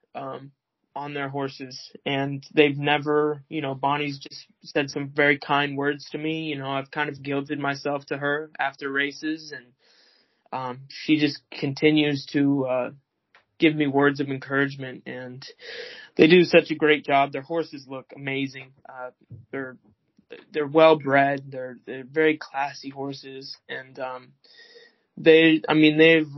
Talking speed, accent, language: 160 wpm, American, English